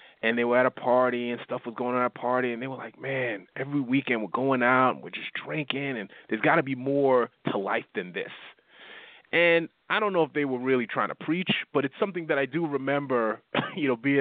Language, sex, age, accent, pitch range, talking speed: English, male, 30-49, American, 110-130 Hz, 250 wpm